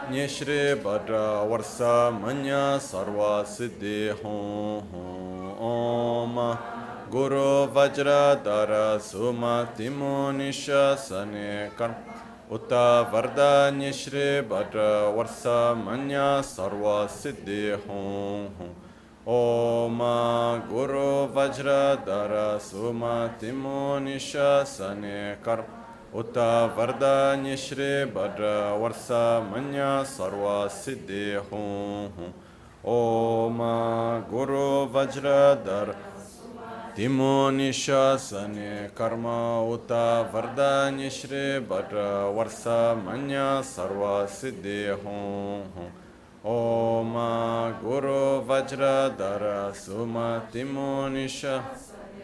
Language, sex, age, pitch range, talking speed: Italian, male, 30-49, 105-135 Hz, 65 wpm